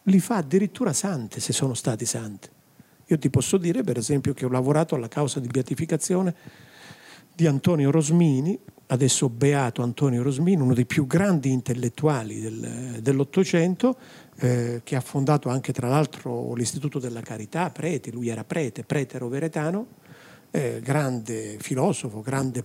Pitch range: 135-190 Hz